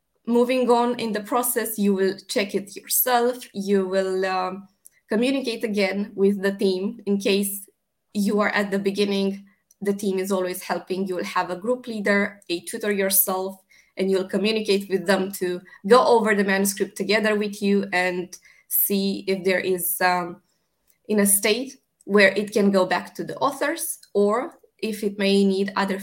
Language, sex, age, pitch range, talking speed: Romanian, female, 20-39, 190-210 Hz, 175 wpm